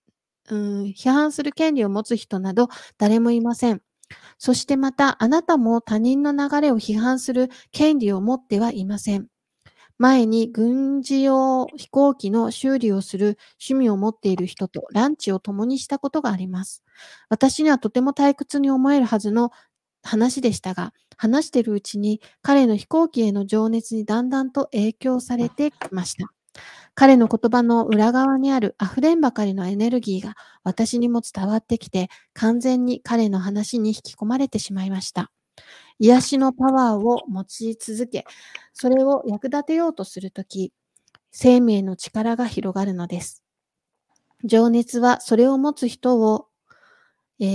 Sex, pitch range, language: female, 210-265 Hz, Japanese